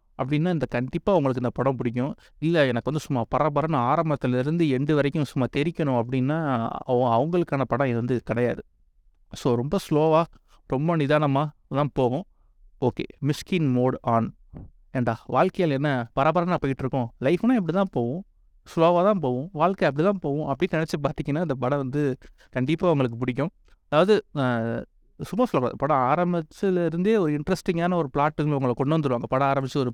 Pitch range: 125-155 Hz